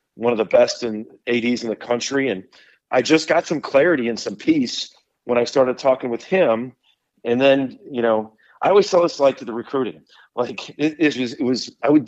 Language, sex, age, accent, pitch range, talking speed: English, male, 40-59, American, 115-150 Hz, 220 wpm